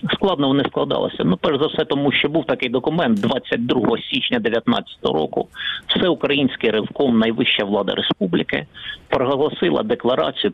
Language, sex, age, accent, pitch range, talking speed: Ukrainian, male, 50-69, native, 145-205 Hz, 130 wpm